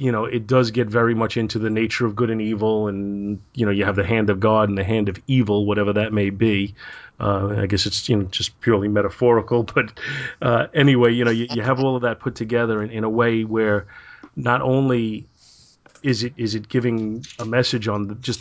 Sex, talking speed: male, 230 wpm